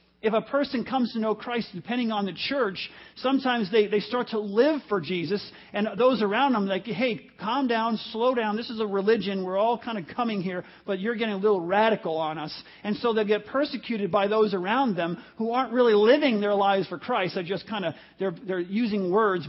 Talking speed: 220 wpm